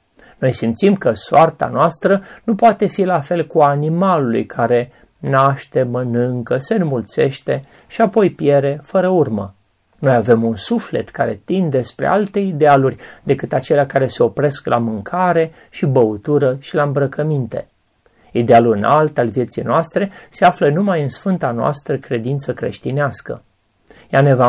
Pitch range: 125-180 Hz